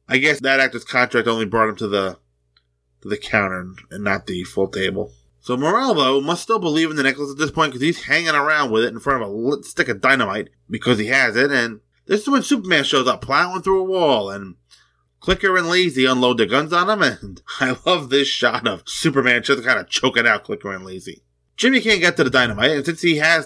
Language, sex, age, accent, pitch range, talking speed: English, male, 20-39, American, 105-160 Hz, 235 wpm